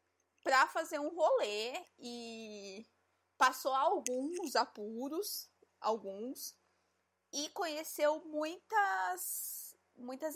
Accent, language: Brazilian, Portuguese